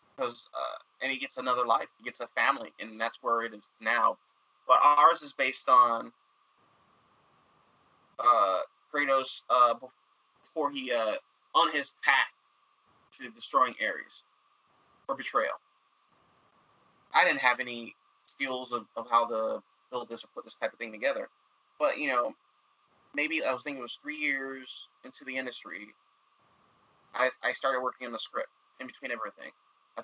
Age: 30-49